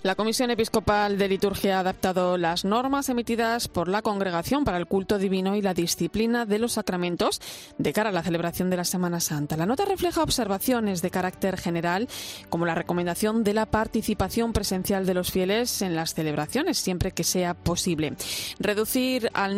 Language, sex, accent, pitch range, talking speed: Spanish, female, Spanish, 175-220 Hz, 180 wpm